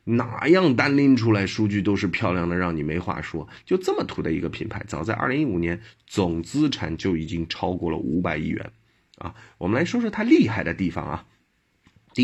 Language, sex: Chinese, male